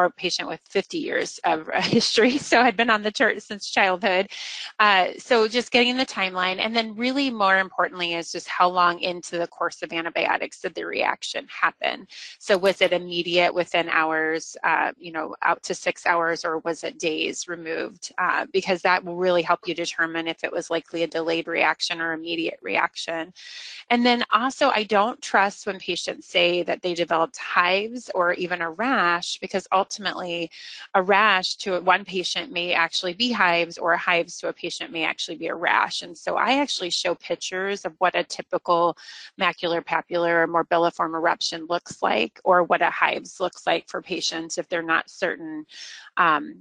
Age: 30-49